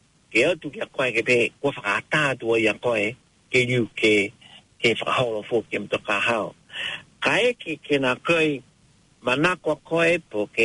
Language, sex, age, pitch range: English, male, 60-79, 125-160 Hz